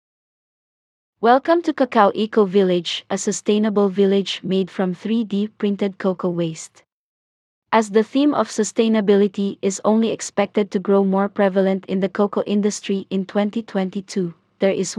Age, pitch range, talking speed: 20-39, 195-210 Hz, 135 wpm